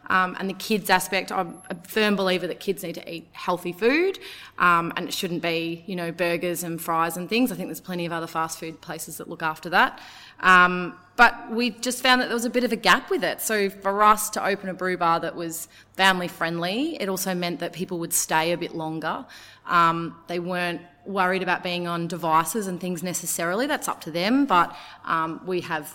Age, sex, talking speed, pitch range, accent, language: 30-49, female, 220 wpm, 170-210 Hz, Australian, English